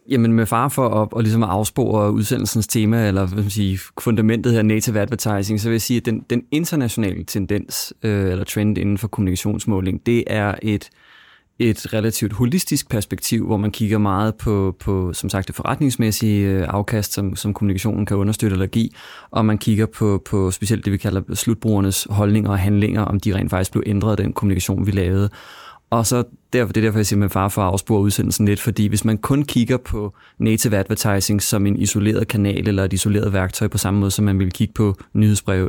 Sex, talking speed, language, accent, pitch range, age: male, 200 wpm, Danish, native, 100-115 Hz, 20-39